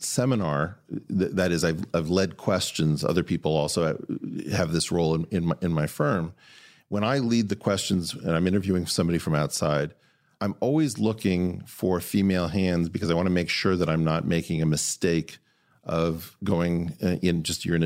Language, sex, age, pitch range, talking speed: English, male, 40-59, 85-110 Hz, 190 wpm